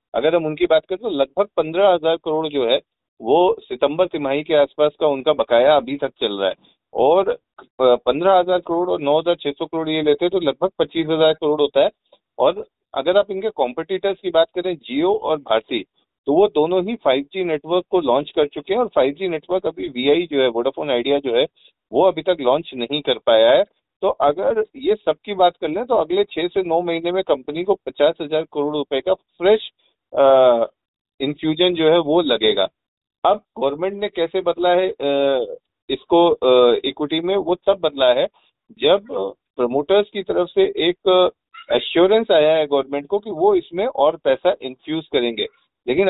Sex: male